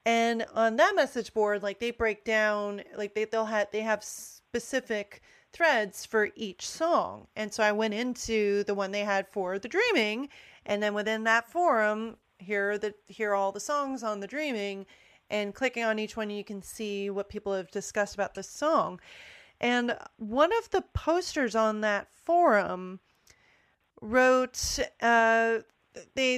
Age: 30-49